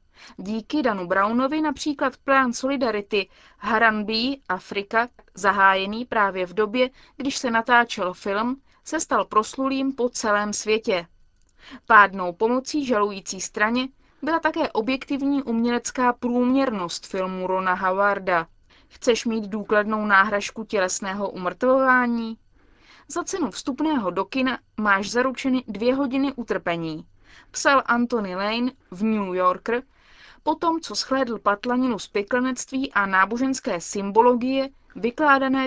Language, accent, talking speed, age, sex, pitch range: Czech, native, 110 wpm, 20-39, female, 205-265 Hz